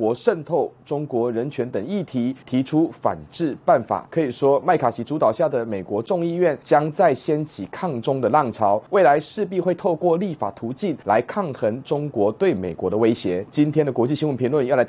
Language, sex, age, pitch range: Chinese, male, 30-49, 125-180 Hz